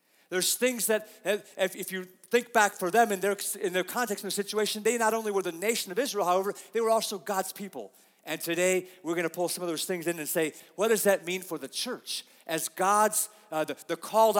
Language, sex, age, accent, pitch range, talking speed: English, male, 40-59, American, 180-245 Hz, 240 wpm